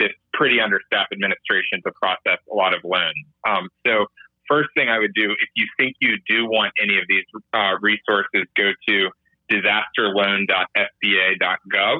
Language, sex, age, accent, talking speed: English, male, 30-49, American, 155 wpm